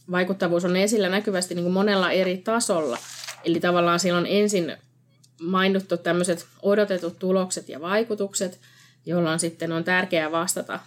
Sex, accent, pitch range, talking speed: female, native, 165-195 Hz, 125 wpm